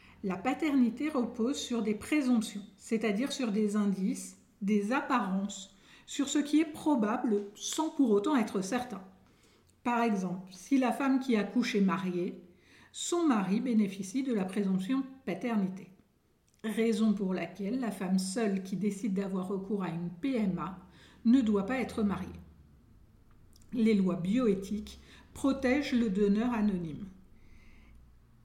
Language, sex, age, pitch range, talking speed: French, female, 50-69, 195-255 Hz, 135 wpm